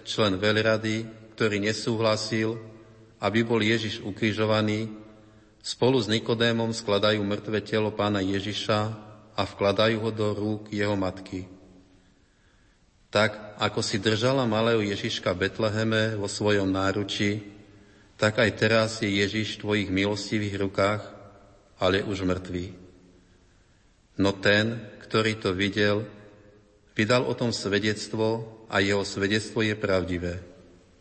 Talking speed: 115 wpm